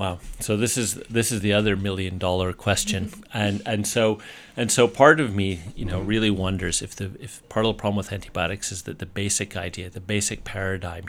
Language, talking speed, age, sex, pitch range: English, 210 wpm, 40-59, male, 95-110 Hz